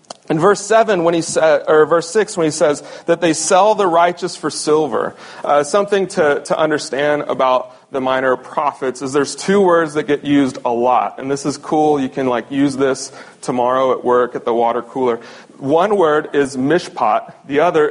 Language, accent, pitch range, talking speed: English, American, 130-170 Hz, 200 wpm